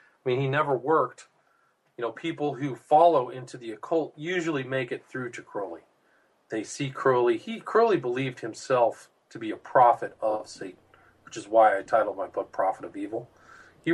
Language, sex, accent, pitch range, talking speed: English, male, American, 105-165 Hz, 185 wpm